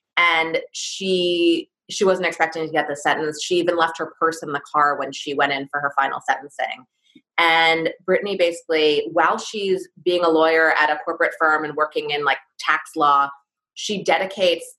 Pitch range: 155-190 Hz